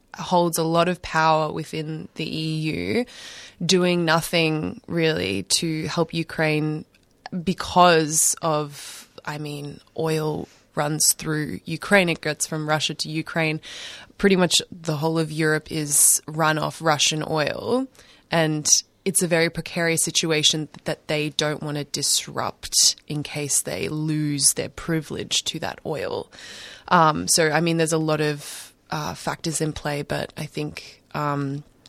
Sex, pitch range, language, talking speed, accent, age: female, 150-170 Hz, English, 145 wpm, Australian, 20-39